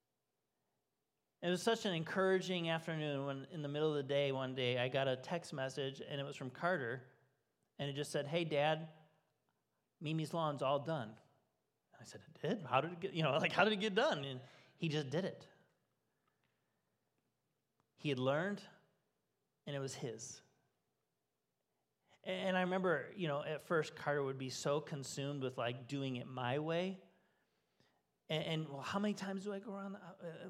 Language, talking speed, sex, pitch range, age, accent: English, 180 wpm, male, 145-185 Hz, 30-49, American